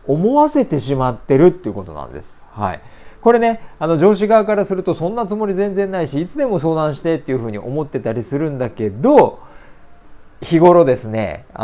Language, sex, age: Japanese, male, 40-59